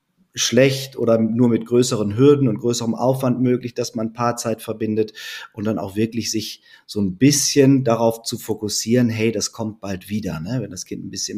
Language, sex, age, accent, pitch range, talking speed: German, male, 30-49, German, 115-135 Hz, 195 wpm